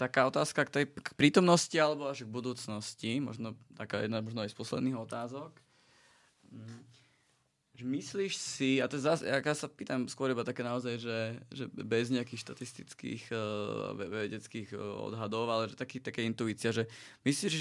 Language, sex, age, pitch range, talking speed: Slovak, male, 20-39, 115-140 Hz, 155 wpm